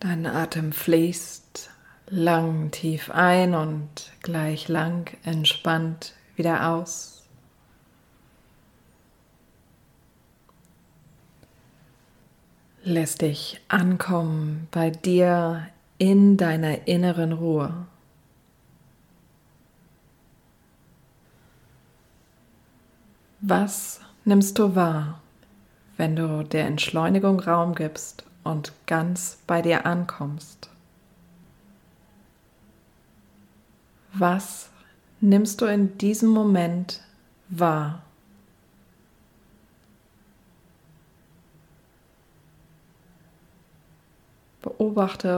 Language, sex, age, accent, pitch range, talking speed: German, female, 30-49, German, 160-180 Hz, 60 wpm